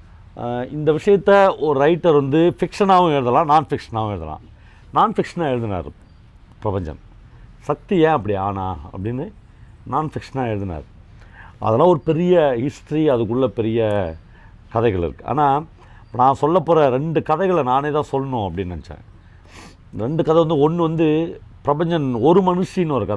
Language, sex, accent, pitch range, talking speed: Tamil, male, native, 100-150 Hz, 130 wpm